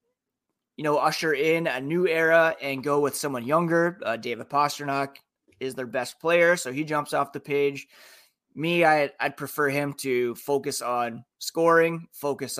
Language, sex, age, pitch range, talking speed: English, male, 20-39, 130-150 Hz, 160 wpm